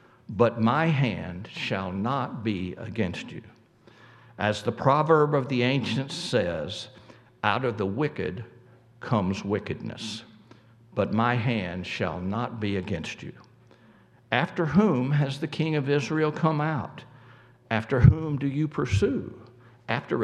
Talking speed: 130 wpm